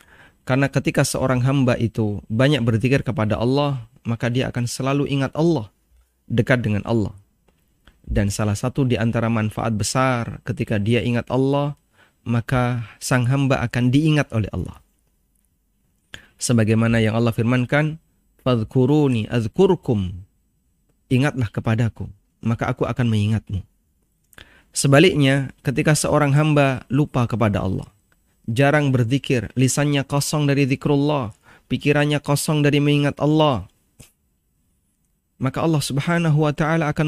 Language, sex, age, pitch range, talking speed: Indonesian, male, 30-49, 115-145 Hz, 115 wpm